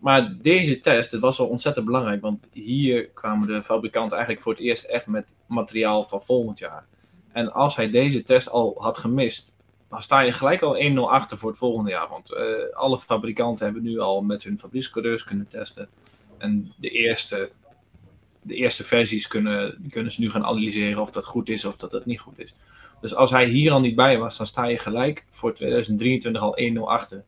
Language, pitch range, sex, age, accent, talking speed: English, 110-125 Hz, male, 20-39, Dutch, 195 wpm